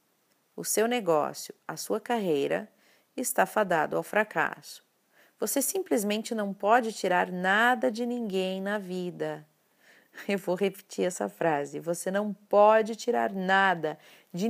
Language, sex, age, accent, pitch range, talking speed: Portuguese, female, 40-59, Brazilian, 165-210 Hz, 130 wpm